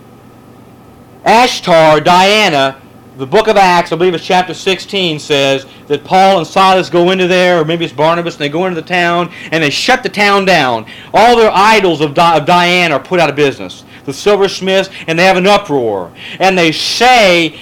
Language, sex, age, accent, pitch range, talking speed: English, male, 40-59, American, 140-195 Hz, 195 wpm